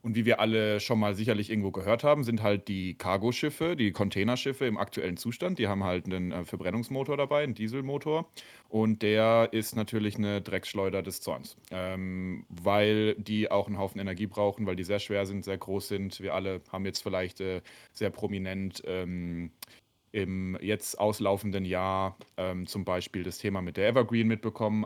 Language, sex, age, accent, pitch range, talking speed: German, male, 30-49, German, 95-115 Hz, 175 wpm